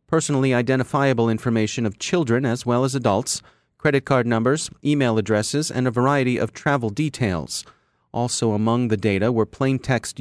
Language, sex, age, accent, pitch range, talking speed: English, male, 30-49, American, 105-130 Hz, 160 wpm